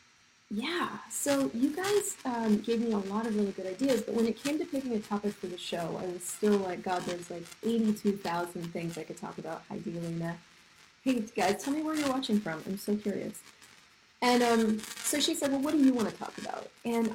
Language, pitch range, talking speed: English, 180-225 Hz, 225 wpm